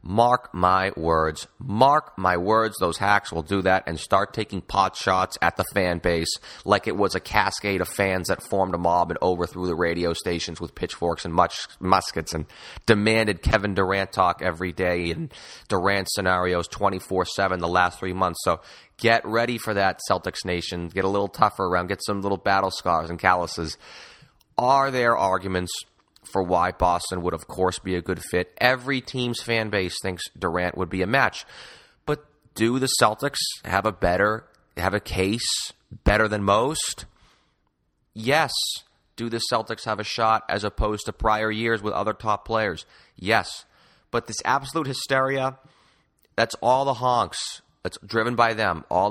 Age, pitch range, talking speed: 30-49, 90-110 Hz, 170 wpm